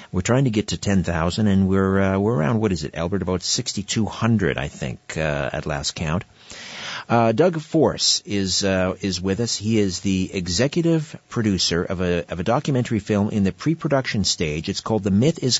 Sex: male